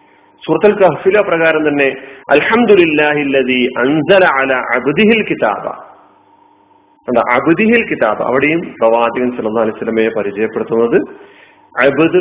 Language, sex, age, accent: Malayalam, male, 40-59, native